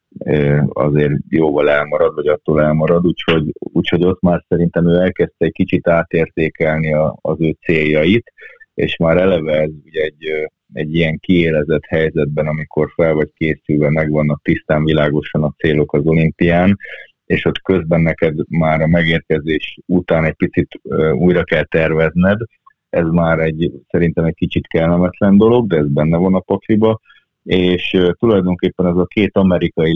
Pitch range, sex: 75-90 Hz, male